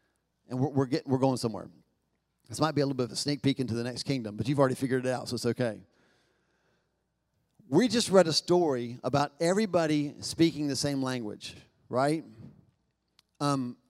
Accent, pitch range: American, 135-175 Hz